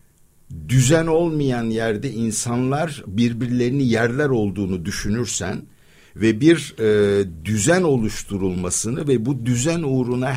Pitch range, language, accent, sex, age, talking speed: 105-125 Hz, Turkish, native, male, 60-79, 95 wpm